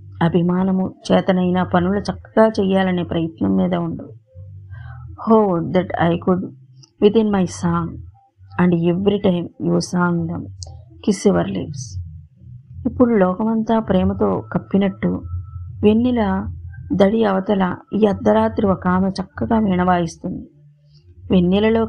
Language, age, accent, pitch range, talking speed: Telugu, 20-39, native, 170-215 Hz, 105 wpm